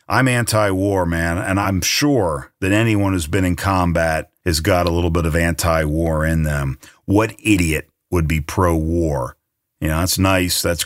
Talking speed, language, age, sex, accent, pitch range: 170 wpm, English, 50-69, male, American, 85-110 Hz